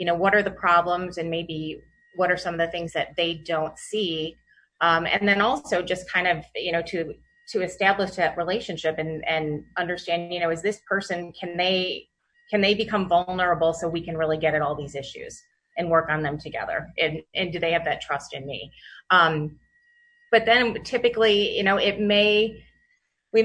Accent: American